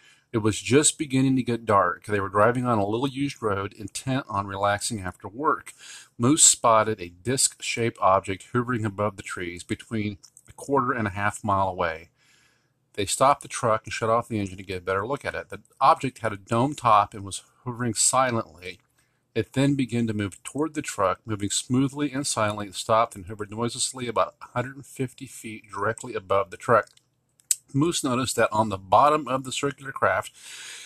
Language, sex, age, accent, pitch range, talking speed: English, male, 40-59, American, 105-130 Hz, 190 wpm